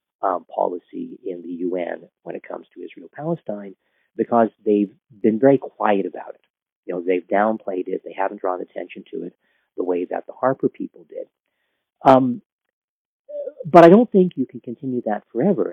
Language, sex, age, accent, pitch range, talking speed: English, male, 50-69, American, 100-155 Hz, 170 wpm